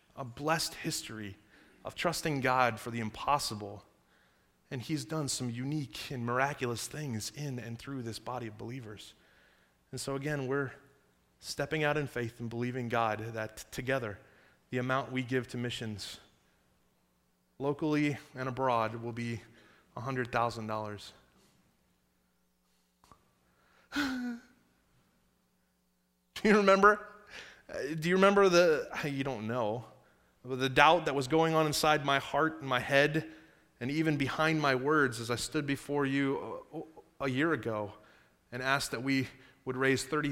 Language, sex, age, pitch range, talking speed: English, male, 20-39, 115-155 Hz, 135 wpm